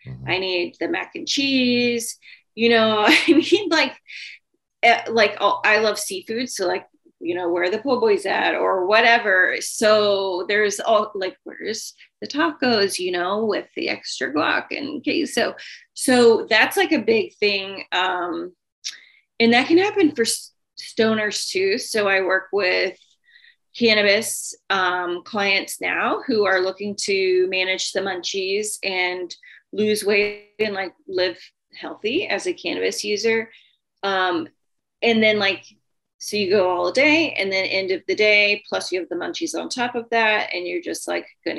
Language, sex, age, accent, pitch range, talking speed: English, female, 30-49, American, 195-285 Hz, 165 wpm